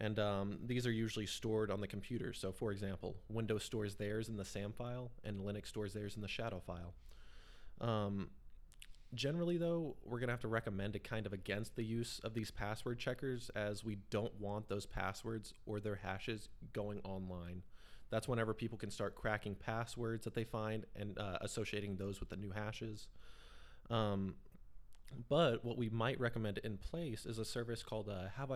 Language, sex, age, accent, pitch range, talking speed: English, male, 20-39, American, 100-115 Hz, 185 wpm